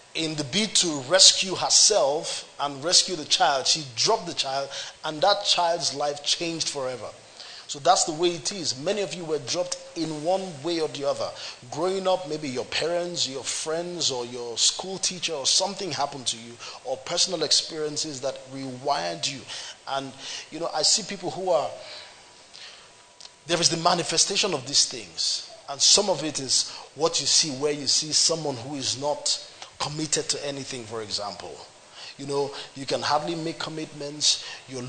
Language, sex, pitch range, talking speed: English, male, 140-175 Hz, 175 wpm